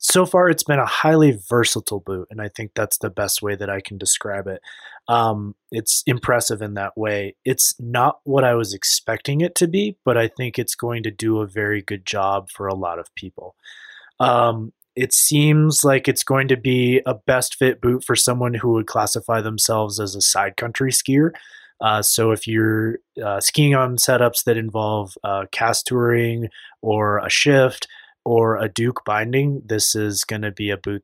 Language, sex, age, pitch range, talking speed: English, male, 20-39, 105-130 Hz, 195 wpm